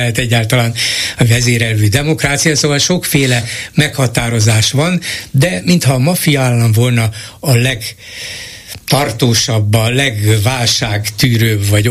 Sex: male